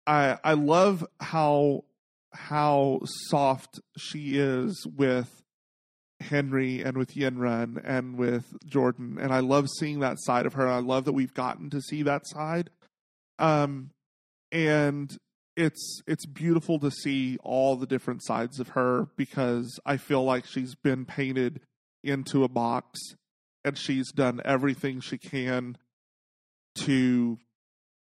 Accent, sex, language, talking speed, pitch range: American, male, English, 135 wpm, 120-140 Hz